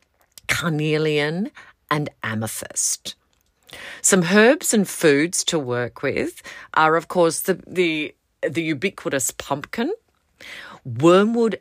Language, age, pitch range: English, 40-59, 135-180 Hz